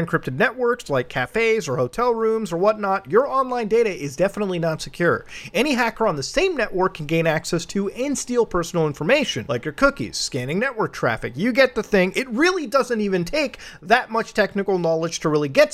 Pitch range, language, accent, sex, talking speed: 180-250 Hz, English, American, male, 200 wpm